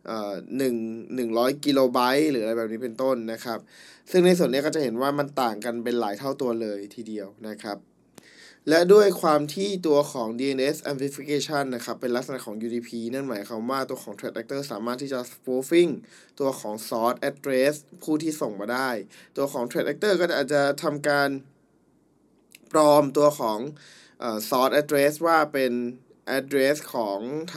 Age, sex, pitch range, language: 20-39, male, 120-150 Hz, Thai